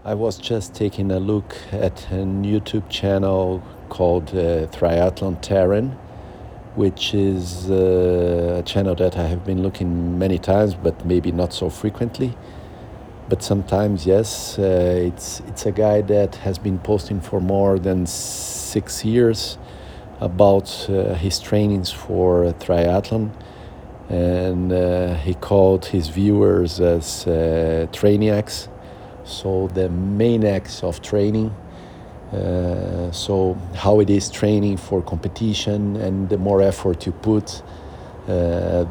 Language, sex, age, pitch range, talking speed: Portuguese, male, 50-69, 90-105 Hz, 130 wpm